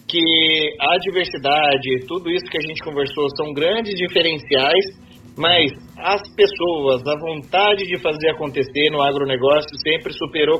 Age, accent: 30-49, Brazilian